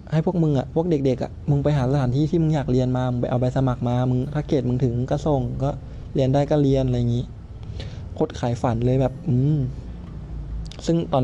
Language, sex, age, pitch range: Thai, male, 20-39, 110-140 Hz